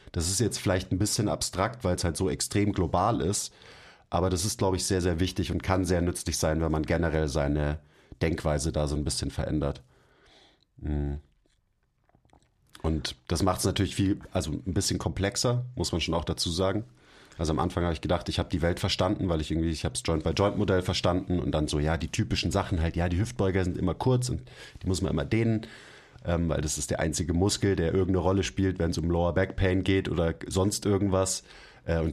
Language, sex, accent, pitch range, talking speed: German, male, German, 85-100 Hz, 205 wpm